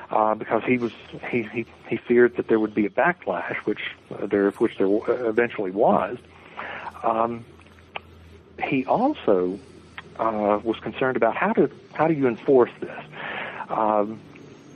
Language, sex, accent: English, male, American